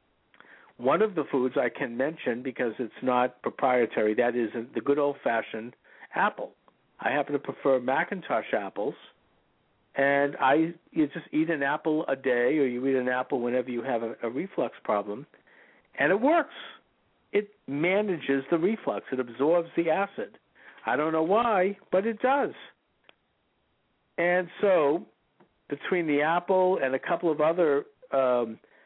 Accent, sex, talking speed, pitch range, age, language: American, male, 150 wpm, 125-170 Hz, 60-79, English